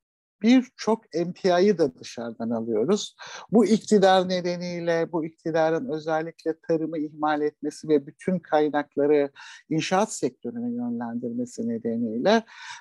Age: 60-79